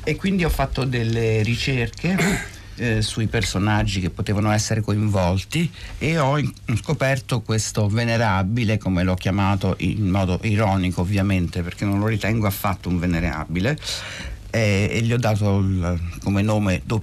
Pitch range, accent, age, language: 95-115 Hz, Italian, 60-79, English